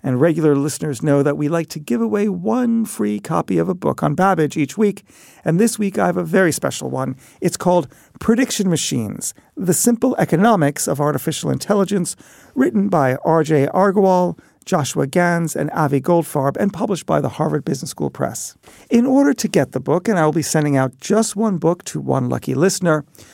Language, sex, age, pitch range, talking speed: English, male, 50-69, 145-210 Hz, 195 wpm